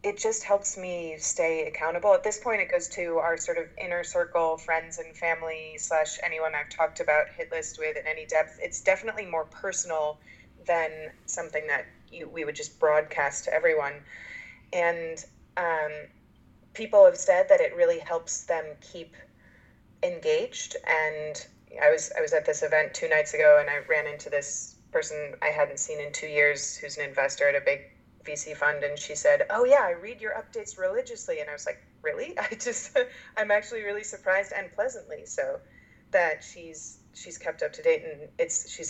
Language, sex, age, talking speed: English, female, 30-49, 190 wpm